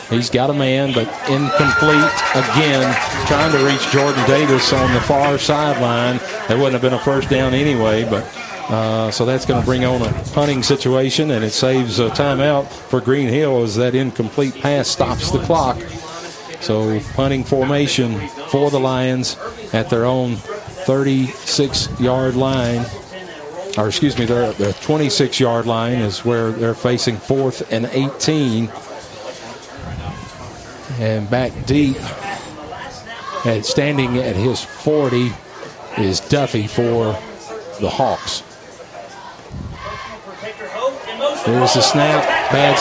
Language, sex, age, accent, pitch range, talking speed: English, male, 40-59, American, 120-140 Hz, 130 wpm